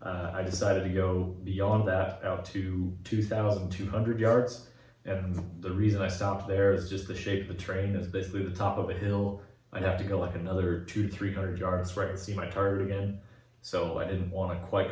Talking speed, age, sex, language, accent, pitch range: 220 wpm, 30-49, male, English, American, 95-100 Hz